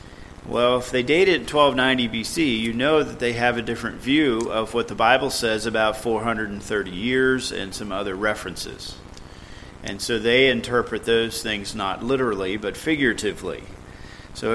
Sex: male